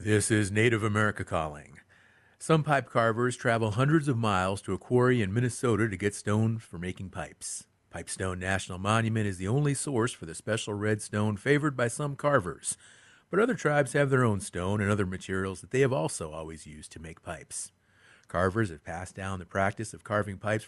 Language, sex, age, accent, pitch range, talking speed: English, male, 40-59, American, 95-125 Hz, 195 wpm